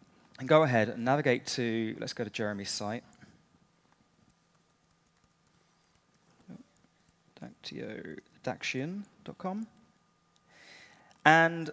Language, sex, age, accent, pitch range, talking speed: English, male, 20-39, British, 115-155 Hz, 70 wpm